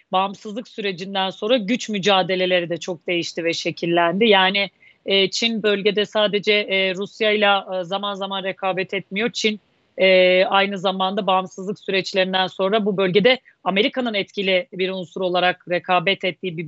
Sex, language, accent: female, Turkish, native